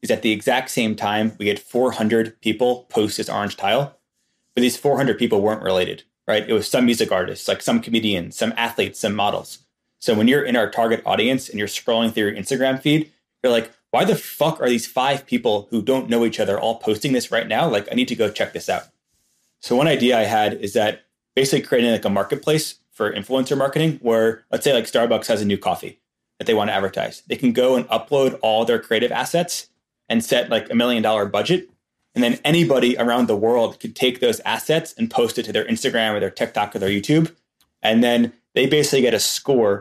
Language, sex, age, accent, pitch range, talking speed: English, male, 20-39, American, 110-130 Hz, 225 wpm